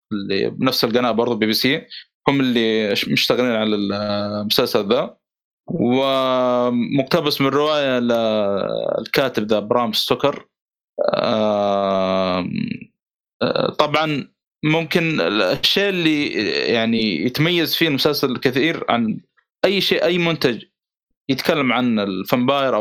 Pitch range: 115-180 Hz